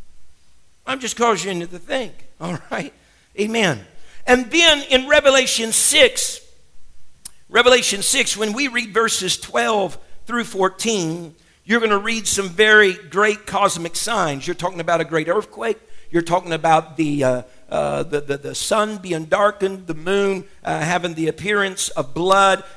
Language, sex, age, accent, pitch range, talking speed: English, male, 50-69, American, 155-205 Hz, 155 wpm